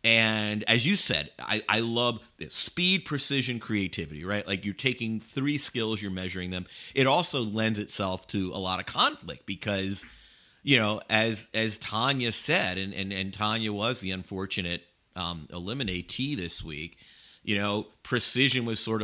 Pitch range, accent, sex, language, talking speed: 90-125 Hz, American, male, English, 165 wpm